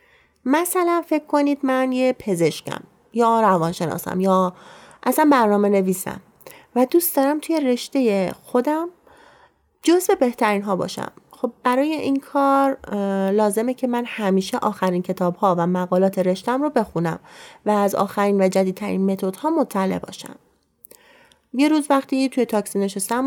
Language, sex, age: Persian, female, 30-49